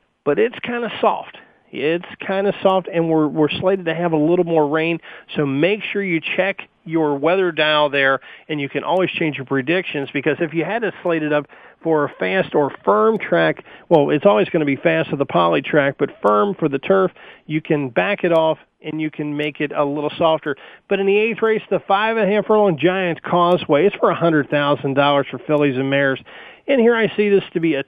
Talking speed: 235 wpm